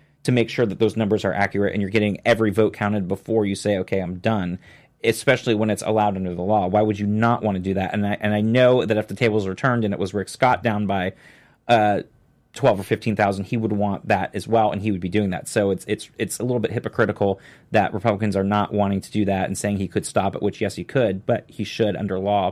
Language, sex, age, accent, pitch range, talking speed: English, male, 30-49, American, 95-110 Hz, 265 wpm